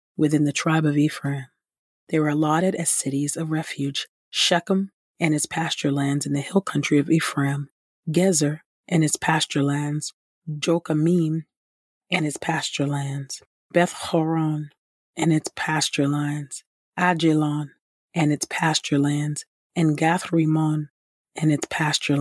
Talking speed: 130 wpm